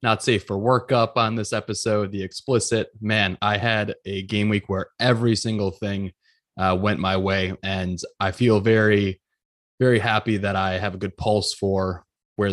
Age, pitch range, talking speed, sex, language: 20-39, 95-110 Hz, 175 wpm, male, English